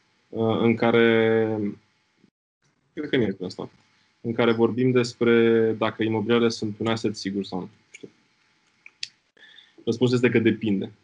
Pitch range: 100-115 Hz